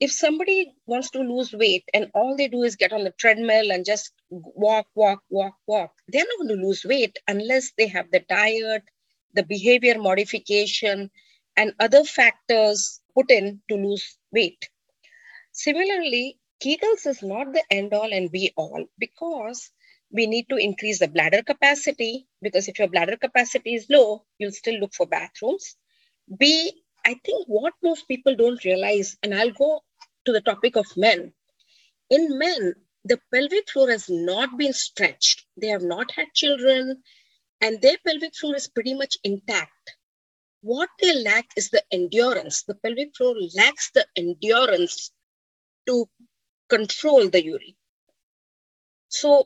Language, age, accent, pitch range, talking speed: English, 30-49, Indian, 205-280 Hz, 155 wpm